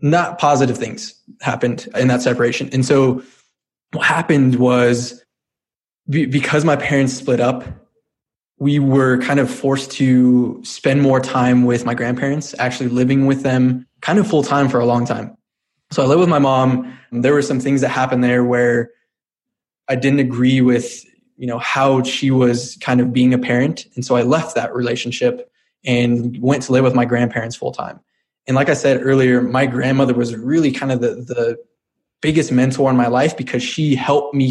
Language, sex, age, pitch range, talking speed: English, male, 20-39, 125-140 Hz, 190 wpm